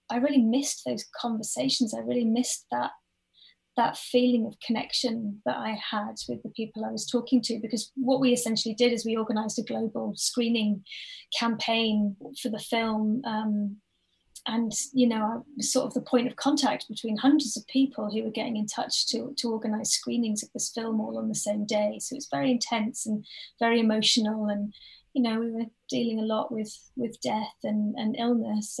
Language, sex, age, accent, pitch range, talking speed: English, female, 30-49, British, 215-245 Hz, 190 wpm